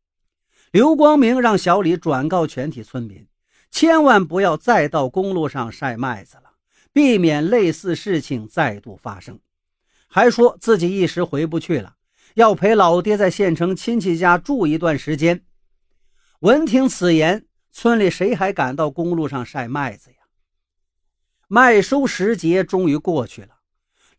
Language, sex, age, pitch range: Chinese, male, 50-69, 140-215 Hz